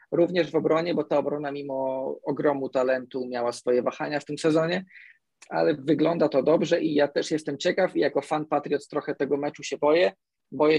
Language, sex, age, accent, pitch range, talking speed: Polish, male, 20-39, native, 130-155 Hz, 190 wpm